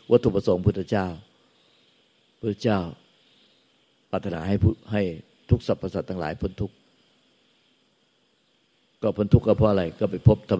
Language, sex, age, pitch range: Thai, male, 60-79, 95-110 Hz